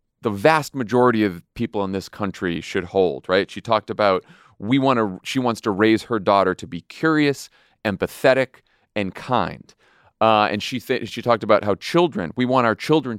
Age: 30-49